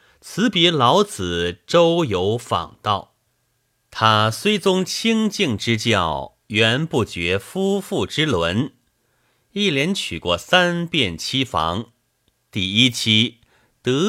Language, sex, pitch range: Chinese, male, 105-175 Hz